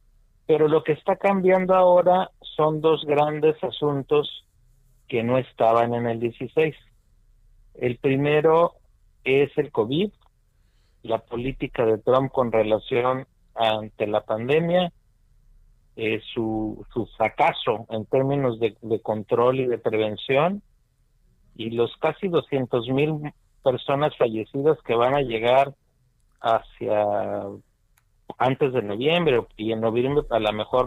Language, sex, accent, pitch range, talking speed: Spanish, male, Mexican, 115-145 Hz, 120 wpm